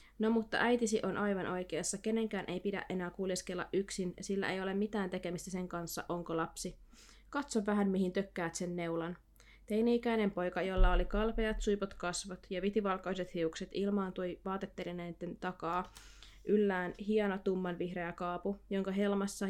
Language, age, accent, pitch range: Finnish, 20-39, native, 180-205 Hz